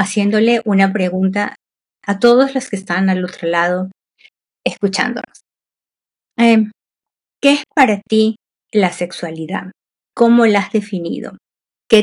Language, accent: Spanish, American